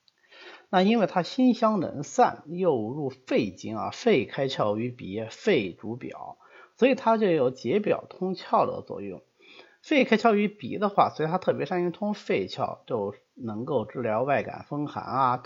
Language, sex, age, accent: Chinese, male, 30-49, native